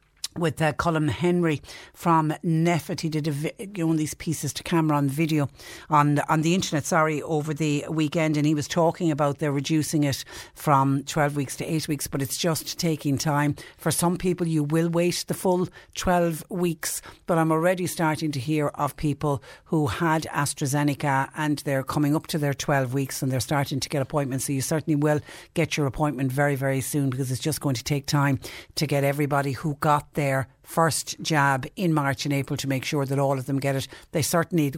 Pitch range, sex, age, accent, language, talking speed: 140-160 Hz, female, 60-79, Irish, English, 205 wpm